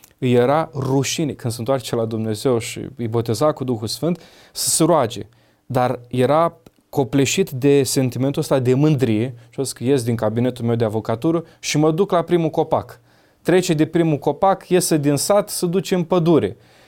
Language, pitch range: Romanian, 120-150 Hz